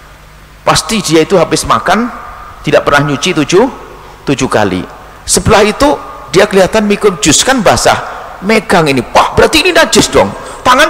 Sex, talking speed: male, 150 wpm